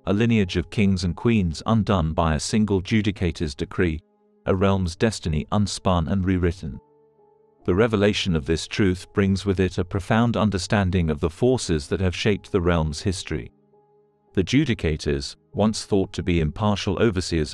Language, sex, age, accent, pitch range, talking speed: English, male, 40-59, British, 85-110 Hz, 155 wpm